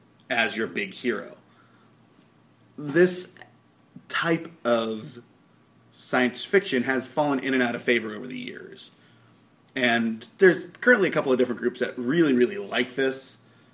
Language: English